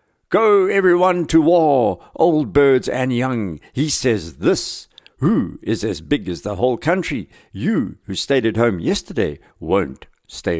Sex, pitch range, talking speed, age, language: male, 90-120 Hz, 155 wpm, 60-79, English